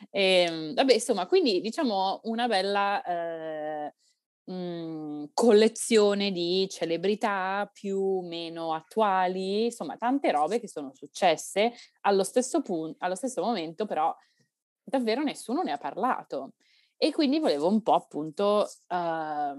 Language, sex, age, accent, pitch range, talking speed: Italian, female, 20-39, native, 160-205 Hz, 125 wpm